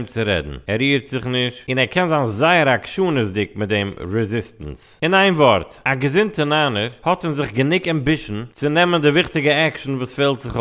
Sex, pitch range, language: male, 120-150 Hz, English